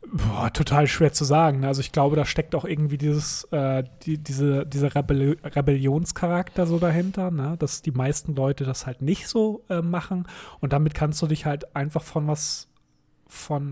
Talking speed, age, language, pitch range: 180 wpm, 30-49, German, 140-165 Hz